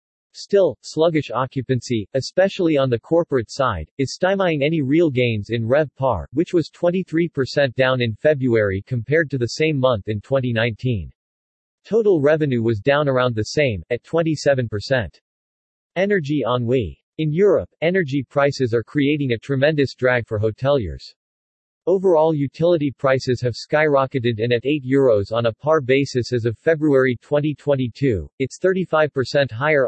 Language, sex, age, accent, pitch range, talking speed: English, male, 40-59, American, 115-150 Hz, 140 wpm